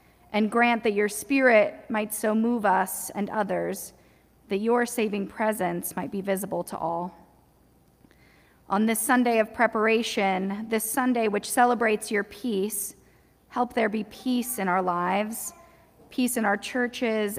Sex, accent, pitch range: female, American, 195-225 Hz